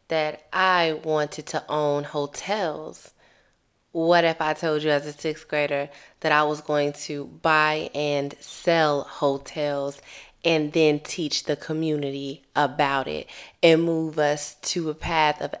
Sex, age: female, 20-39